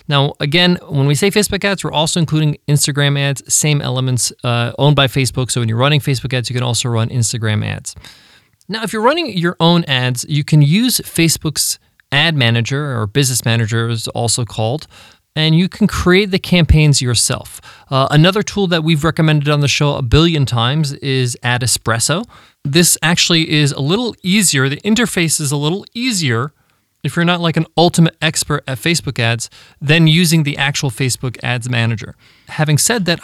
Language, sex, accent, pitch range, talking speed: English, male, American, 130-170 Hz, 185 wpm